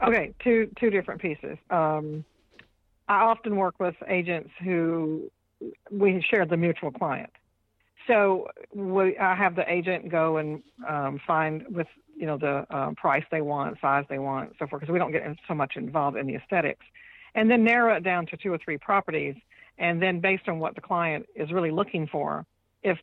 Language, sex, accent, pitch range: English, female, American, 150-190 Hz